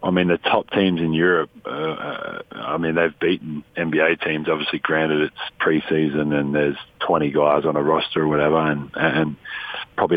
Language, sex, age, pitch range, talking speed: English, male, 40-59, 80-90 Hz, 185 wpm